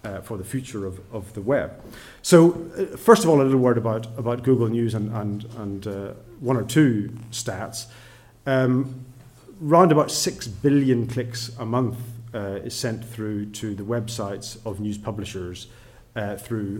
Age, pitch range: 30-49, 105-120 Hz